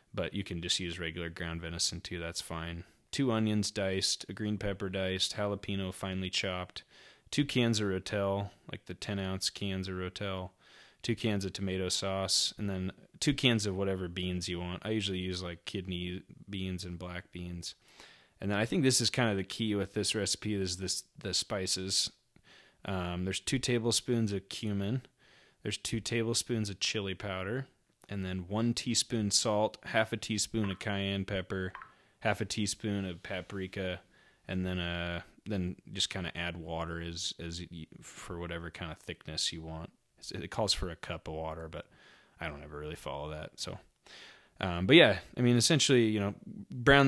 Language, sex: English, male